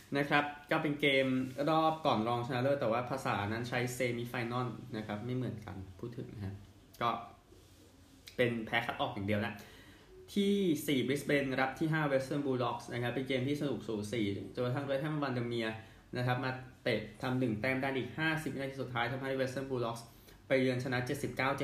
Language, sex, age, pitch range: Thai, male, 20-39, 110-135 Hz